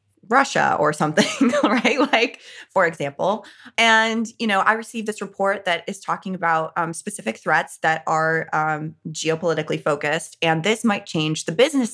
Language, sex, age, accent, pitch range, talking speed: English, female, 20-39, American, 165-230 Hz, 160 wpm